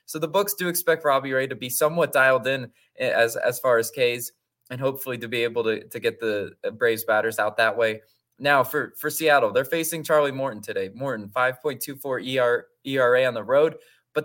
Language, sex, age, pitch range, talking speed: English, male, 20-39, 120-160 Hz, 200 wpm